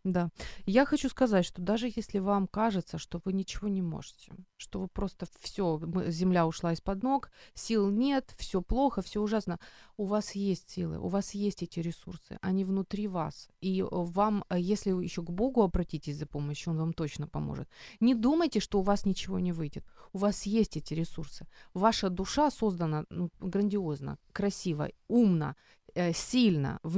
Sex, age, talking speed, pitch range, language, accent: female, 30-49, 170 wpm, 170-215 Hz, Ukrainian, native